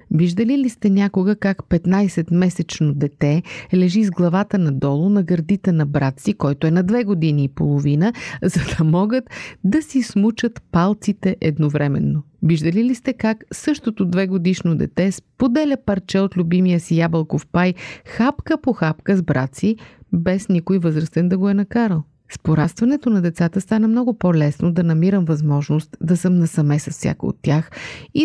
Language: Bulgarian